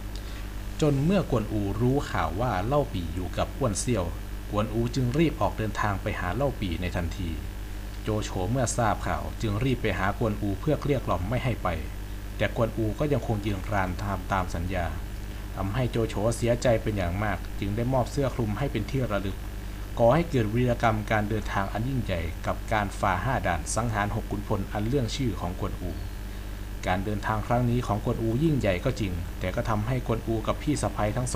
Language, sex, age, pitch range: Thai, male, 60-79, 100-120 Hz